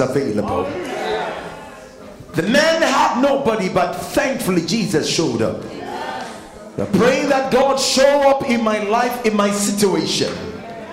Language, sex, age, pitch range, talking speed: English, male, 50-69, 205-275 Hz, 120 wpm